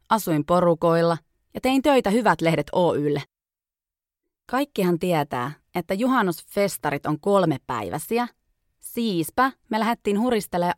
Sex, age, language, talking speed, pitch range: female, 30-49, Finnish, 110 wpm, 160-235 Hz